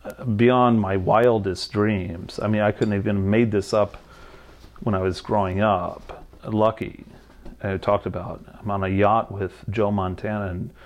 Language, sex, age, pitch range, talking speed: English, male, 40-59, 100-115 Hz, 160 wpm